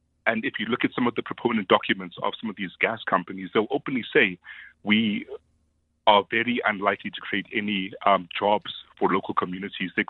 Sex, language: male, English